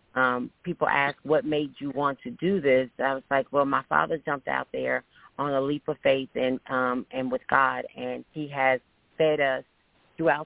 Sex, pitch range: female, 135-155 Hz